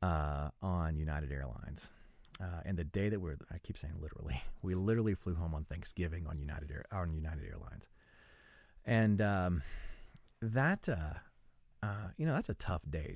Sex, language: male, English